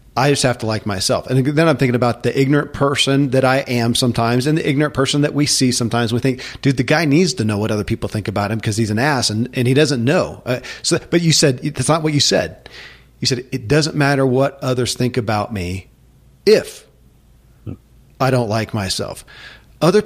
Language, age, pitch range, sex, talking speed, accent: English, 40-59, 115-140 Hz, male, 225 wpm, American